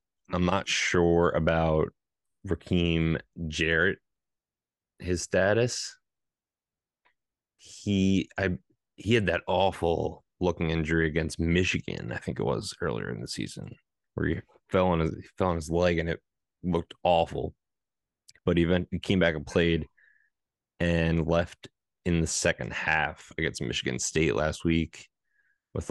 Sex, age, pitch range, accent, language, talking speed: male, 30-49, 80-90 Hz, American, English, 135 wpm